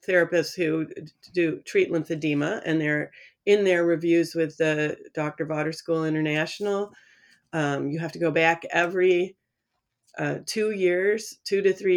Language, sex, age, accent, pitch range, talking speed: English, female, 40-59, American, 150-195 Hz, 145 wpm